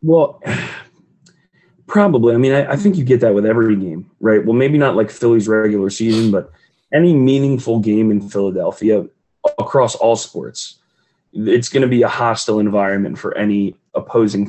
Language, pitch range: English, 105-140 Hz